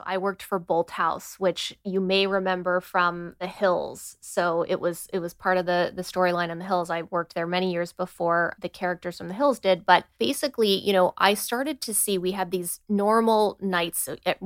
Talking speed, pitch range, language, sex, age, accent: 215 wpm, 175-205 Hz, English, female, 20-39, American